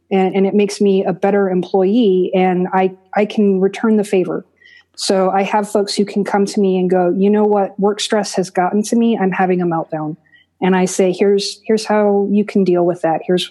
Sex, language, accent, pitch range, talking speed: female, English, American, 180-210 Hz, 225 wpm